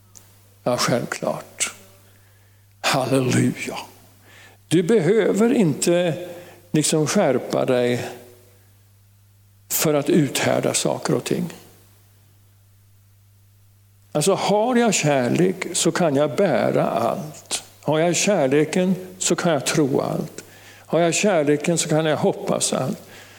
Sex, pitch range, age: male, 100-160 Hz, 60-79